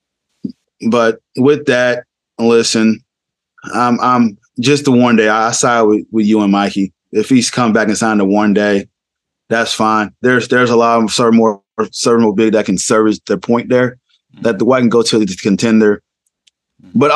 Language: English